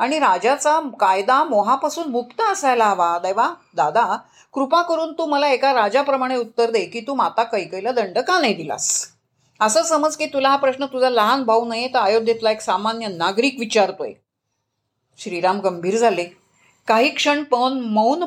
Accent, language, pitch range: native, Marathi, 200-260 Hz